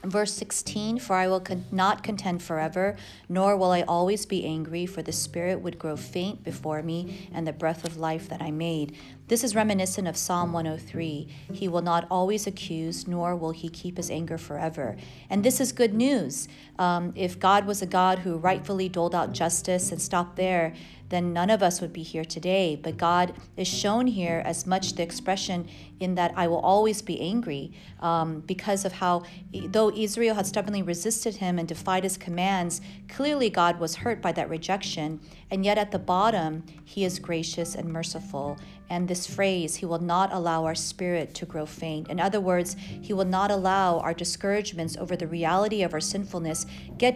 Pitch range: 165-195 Hz